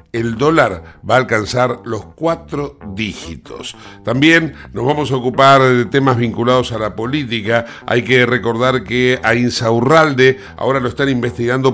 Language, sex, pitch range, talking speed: Spanish, male, 115-135 Hz, 150 wpm